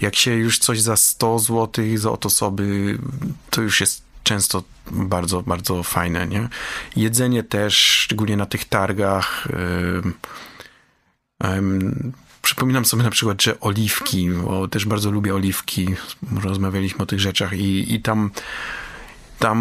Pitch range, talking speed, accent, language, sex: 95-115 Hz, 135 wpm, native, Polish, male